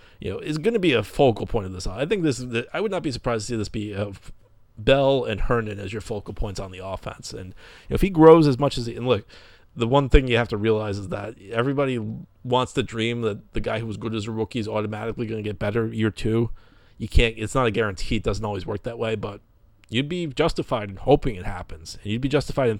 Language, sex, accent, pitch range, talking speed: English, male, American, 100-120 Hz, 265 wpm